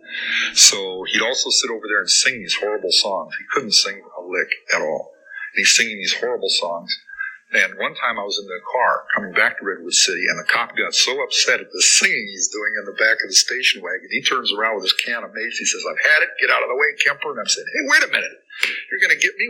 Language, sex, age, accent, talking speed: English, male, 50-69, American, 265 wpm